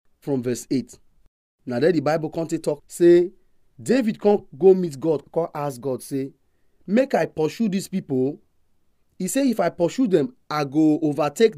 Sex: male